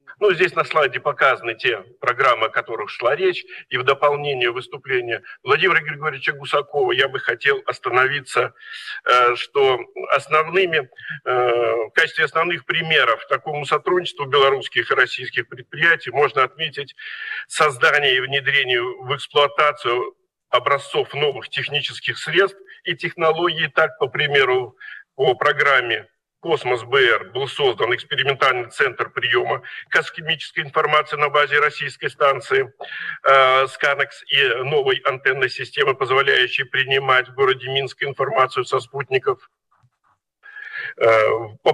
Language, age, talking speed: Russian, 50-69, 115 wpm